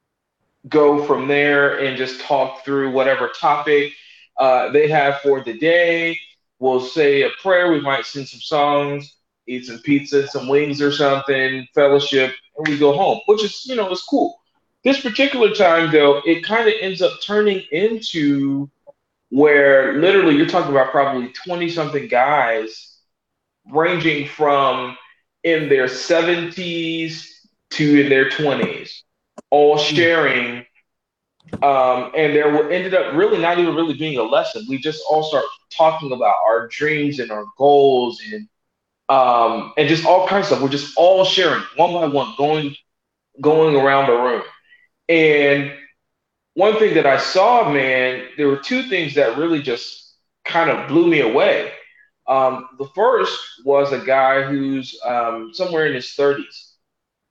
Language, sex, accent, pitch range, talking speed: English, male, American, 135-170 Hz, 155 wpm